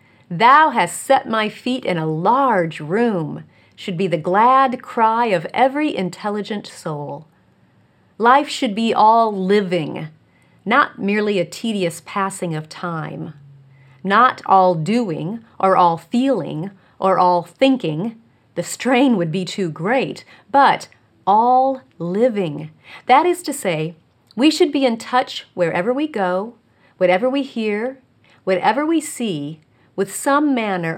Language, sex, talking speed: English, female, 130 wpm